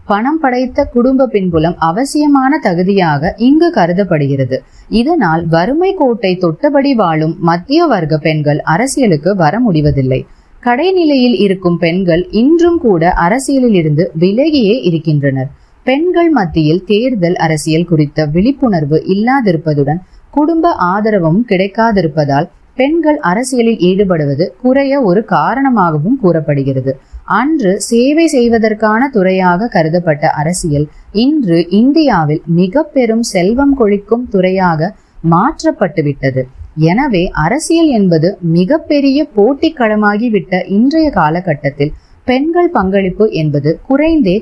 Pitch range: 160-255 Hz